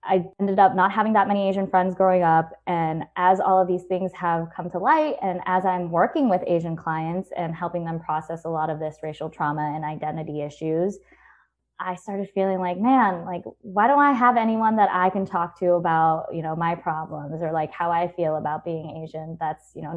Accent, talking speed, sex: American, 220 wpm, female